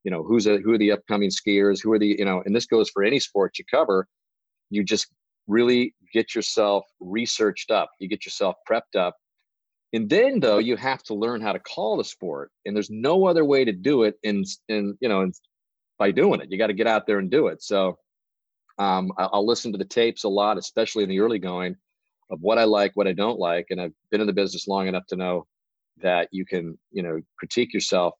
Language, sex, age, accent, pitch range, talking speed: English, male, 40-59, American, 95-115 Hz, 230 wpm